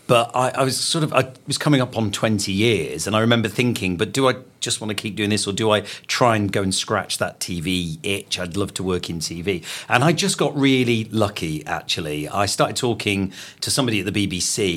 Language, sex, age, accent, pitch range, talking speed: English, male, 40-59, British, 100-130 Hz, 235 wpm